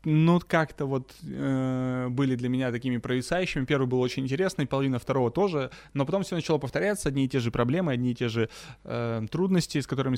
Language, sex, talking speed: Russian, male, 200 wpm